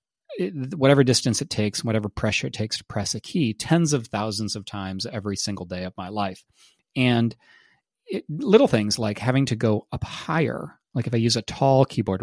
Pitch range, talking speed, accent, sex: 100-125 Hz, 190 wpm, American, male